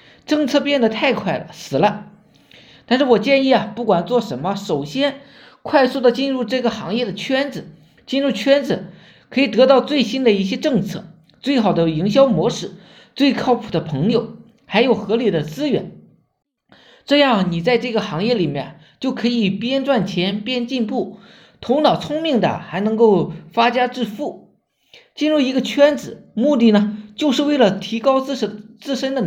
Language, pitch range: Chinese, 195-270 Hz